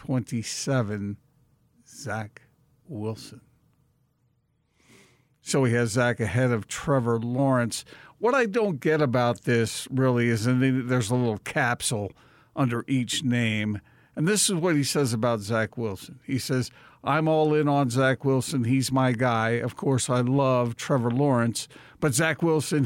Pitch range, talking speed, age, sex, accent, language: 120-145 Hz, 145 wpm, 50-69, male, American, English